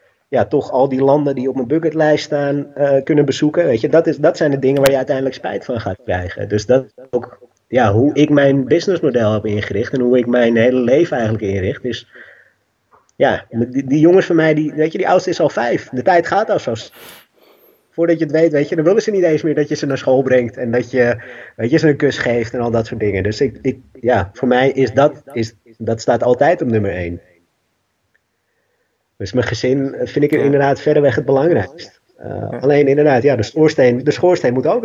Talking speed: 230 wpm